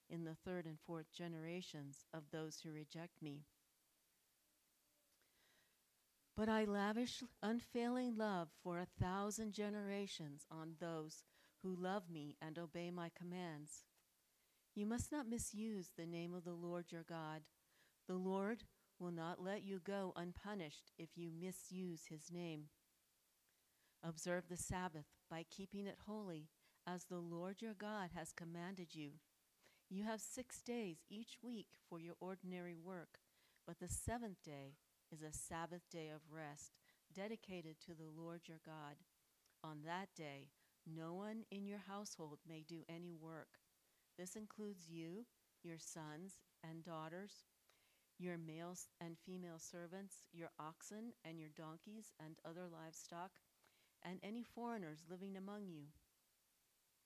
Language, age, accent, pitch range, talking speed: English, 50-69, American, 160-195 Hz, 140 wpm